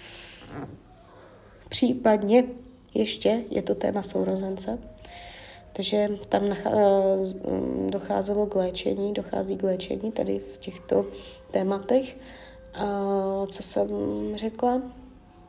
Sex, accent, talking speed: female, native, 90 wpm